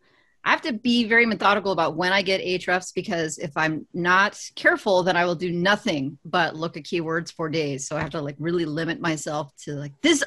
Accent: American